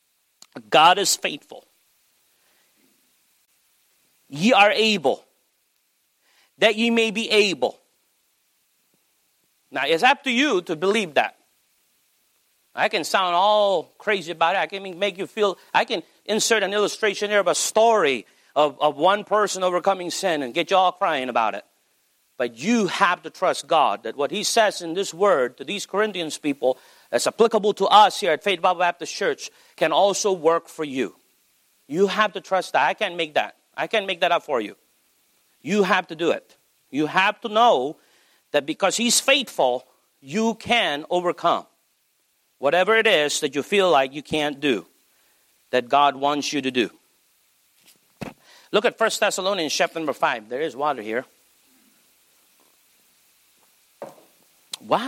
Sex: male